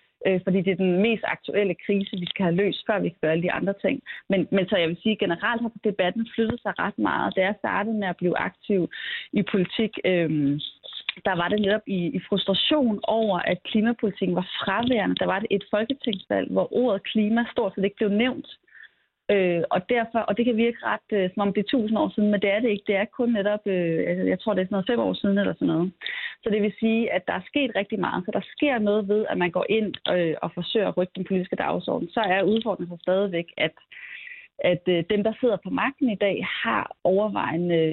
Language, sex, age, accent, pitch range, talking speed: Danish, female, 30-49, native, 180-220 Hz, 235 wpm